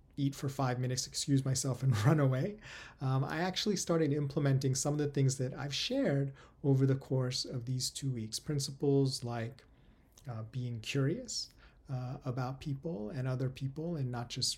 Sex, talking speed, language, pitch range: male, 175 wpm, English, 120-145 Hz